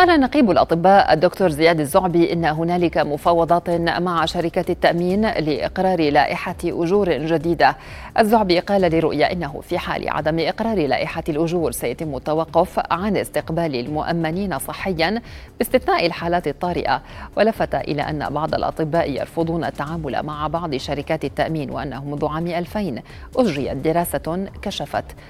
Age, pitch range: 40-59, 150-175 Hz